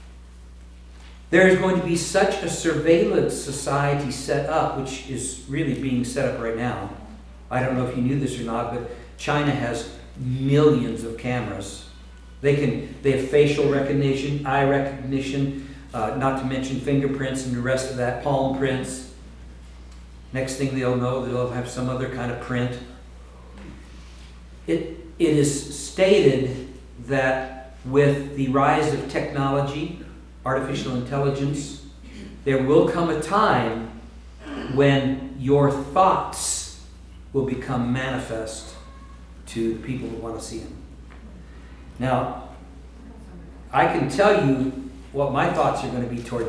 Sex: male